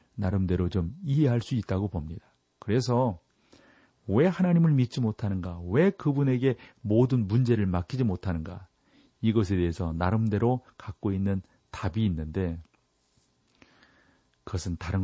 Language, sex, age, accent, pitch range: Korean, male, 40-59, native, 90-130 Hz